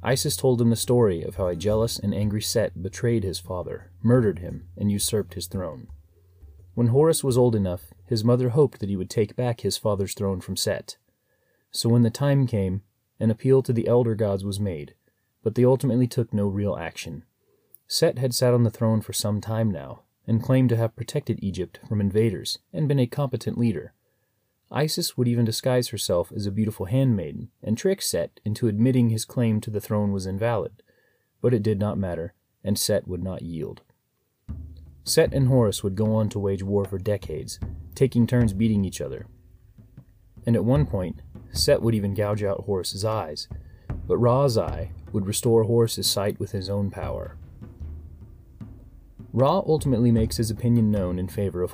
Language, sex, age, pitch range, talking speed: English, male, 30-49, 95-120 Hz, 185 wpm